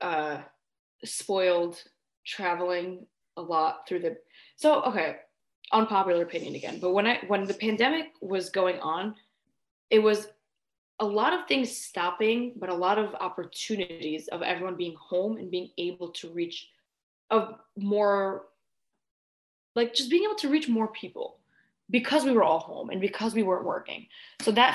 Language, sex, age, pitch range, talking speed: English, female, 20-39, 175-225 Hz, 155 wpm